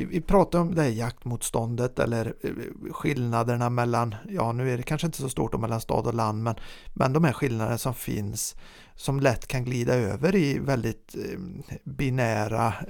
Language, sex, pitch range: Swedish, male, 115-165 Hz